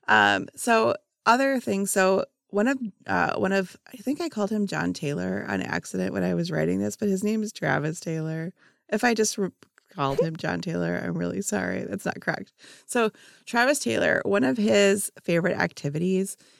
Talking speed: 185 wpm